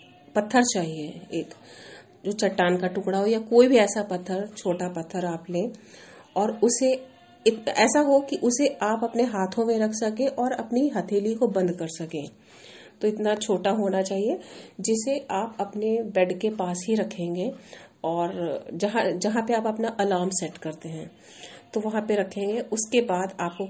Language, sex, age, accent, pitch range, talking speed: Hindi, female, 40-59, native, 185-235 Hz, 170 wpm